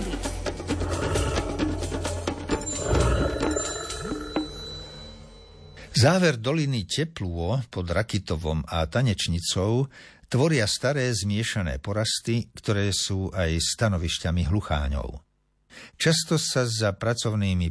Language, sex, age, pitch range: Slovak, male, 60-79, 85-120 Hz